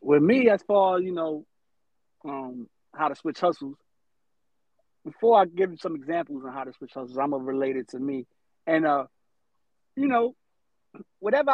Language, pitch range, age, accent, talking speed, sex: English, 155-230 Hz, 30-49, American, 165 wpm, male